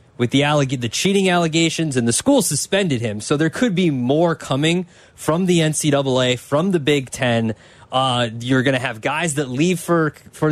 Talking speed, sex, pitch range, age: 195 wpm, male, 135-185 Hz, 20-39